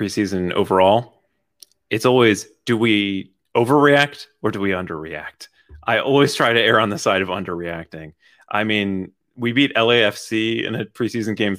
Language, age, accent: English, 30-49, American